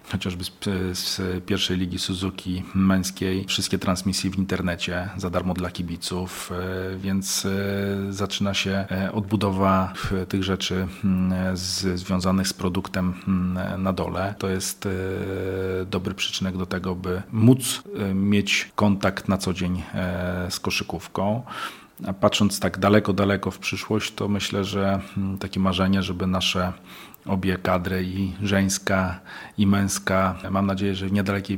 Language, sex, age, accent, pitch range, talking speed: Polish, male, 40-59, native, 95-100 Hz, 120 wpm